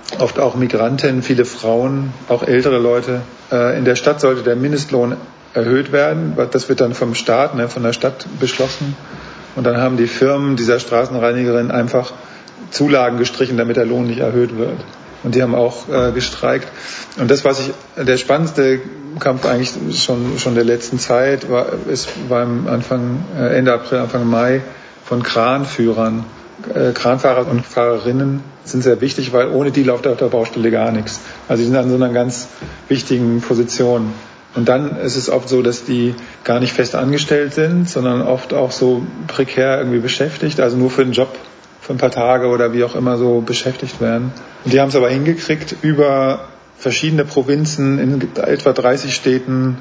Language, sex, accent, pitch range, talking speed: German, male, German, 120-135 Hz, 170 wpm